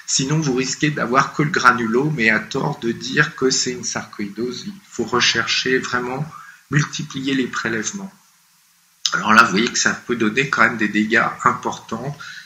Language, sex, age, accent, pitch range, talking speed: French, male, 50-69, French, 105-145 Hz, 175 wpm